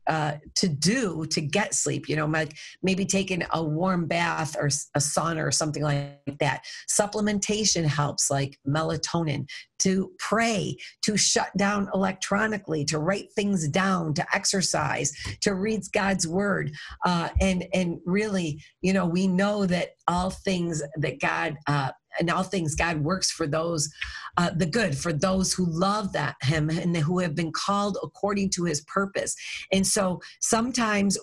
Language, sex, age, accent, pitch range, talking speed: English, female, 40-59, American, 160-205 Hz, 160 wpm